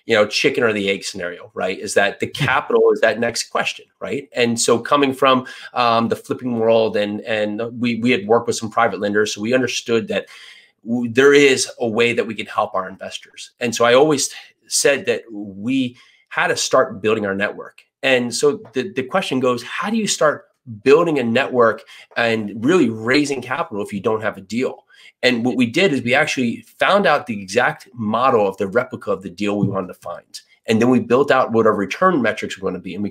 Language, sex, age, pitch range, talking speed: English, male, 30-49, 110-135 Hz, 225 wpm